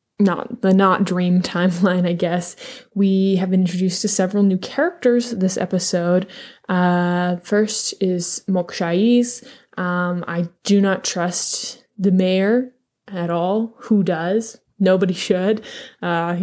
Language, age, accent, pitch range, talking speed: English, 20-39, American, 180-240 Hz, 125 wpm